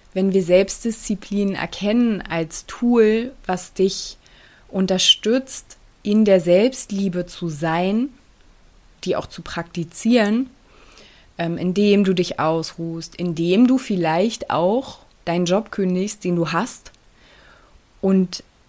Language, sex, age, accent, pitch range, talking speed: German, female, 20-39, German, 170-210 Hz, 105 wpm